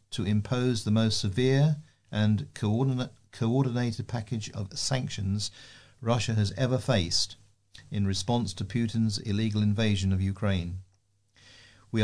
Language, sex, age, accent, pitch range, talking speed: English, male, 50-69, British, 100-125 Hz, 115 wpm